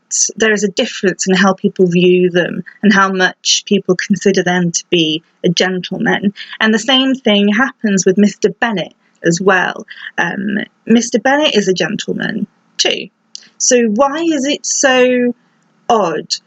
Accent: British